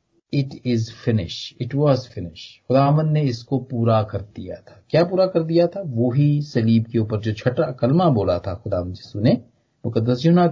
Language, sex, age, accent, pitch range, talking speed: Hindi, male, 40-59, native, 110-145 Hz, 195 wpm